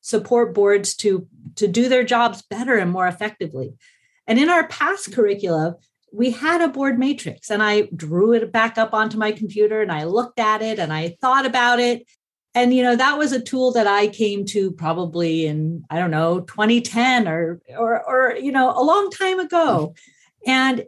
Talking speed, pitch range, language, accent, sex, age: 195 wpm, 190-260 Hz, English, American, female, 40-59